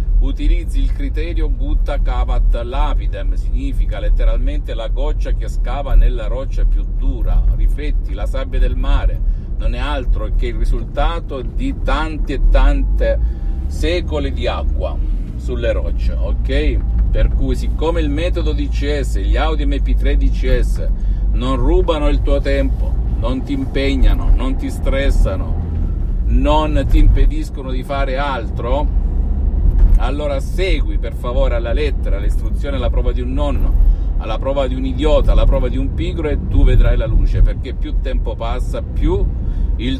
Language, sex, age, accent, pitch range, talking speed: Italian, male, 50-69, native, 65-110 Hz, 145 wpm